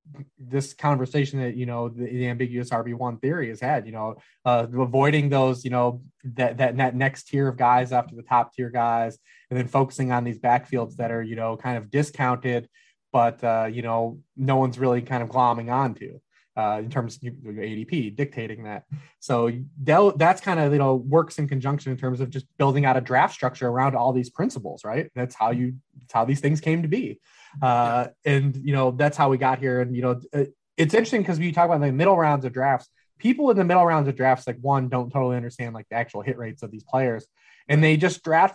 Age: 20-39